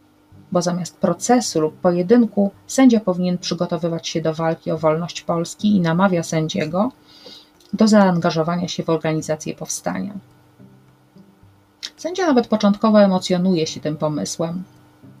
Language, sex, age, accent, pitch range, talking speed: Polish, female, 30-49, native, 155-195 Hz, 120 wpm